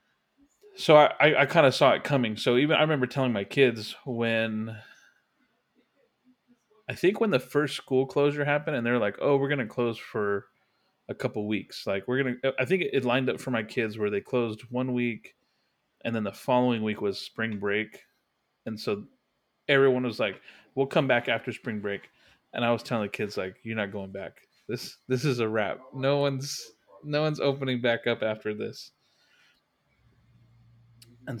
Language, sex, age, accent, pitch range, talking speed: English, male, 20-39, American, 110-130 Hz, 190 wpm